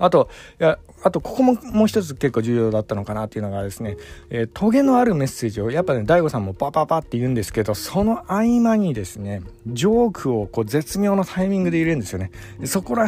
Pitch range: 105-160 Hz